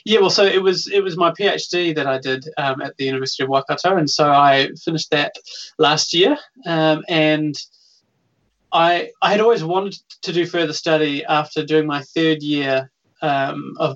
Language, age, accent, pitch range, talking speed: English, 20-39, Australian, 135-165 Hz, 185 wpm